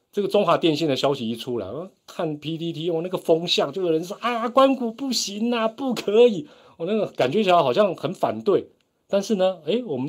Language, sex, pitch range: Chinese, male, 110-165 Hz